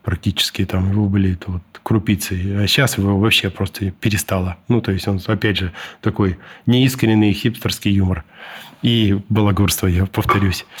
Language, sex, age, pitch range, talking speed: Russian, male, 20-39, 100-115 Hz, 140 wpm